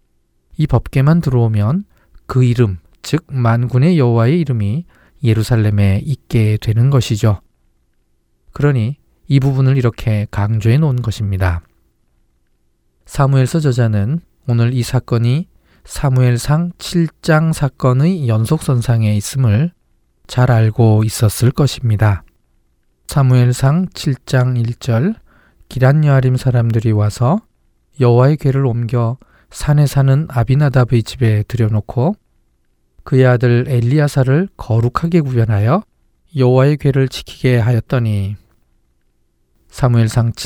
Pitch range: 110-135 Hz